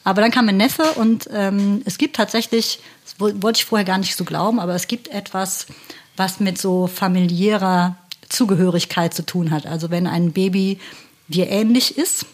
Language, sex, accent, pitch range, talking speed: German, female, German, 175-220 Hz, 180 wpm